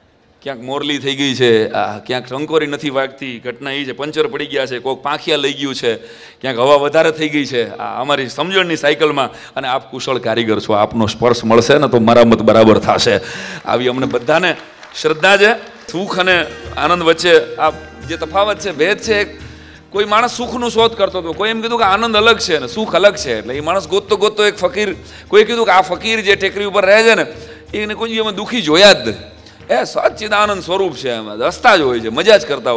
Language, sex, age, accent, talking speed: Hindi, male, 40-59, native, 170 wpm